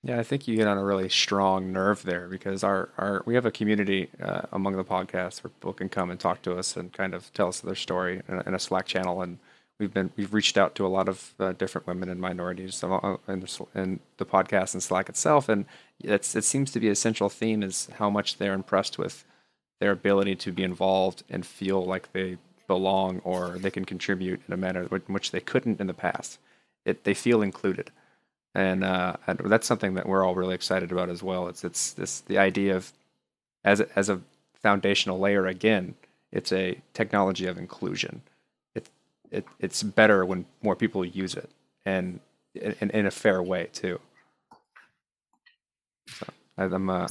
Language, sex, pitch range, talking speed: English, male, 95-100 Hz, 195 wpm